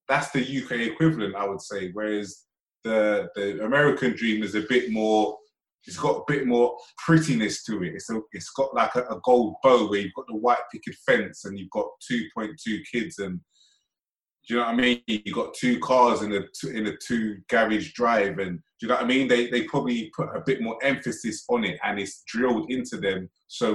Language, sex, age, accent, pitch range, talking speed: English, male, 20-39, British, 105-135 Hz, 210 wpm